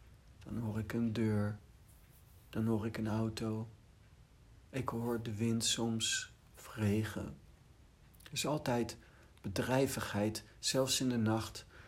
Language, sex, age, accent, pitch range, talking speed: Dutch, male, 60-79, Dutch, 105-130 Hz, 120 wpm